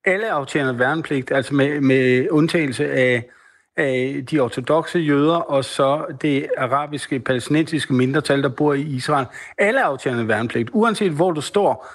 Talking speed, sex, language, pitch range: 145 wpm, male, Danish, 135-165 Hz